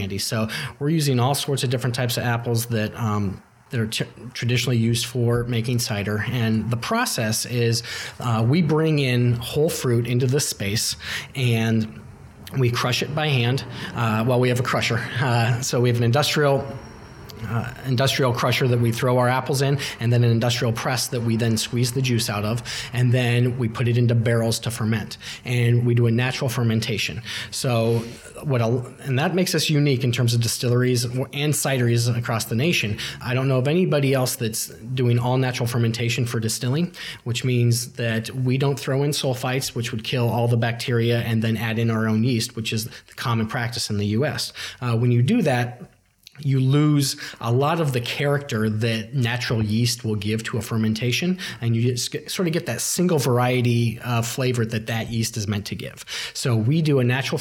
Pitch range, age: 115-130 Hz, 30-49